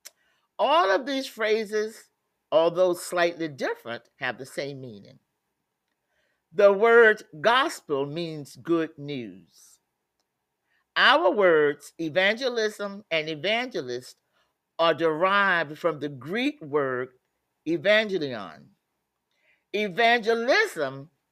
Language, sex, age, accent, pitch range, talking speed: English, male, 50-69, American, 150-210 Hz, 85 wpm